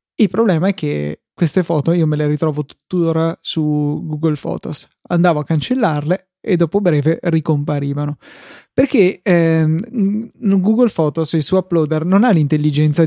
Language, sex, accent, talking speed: Italian, male, native, 145 wpm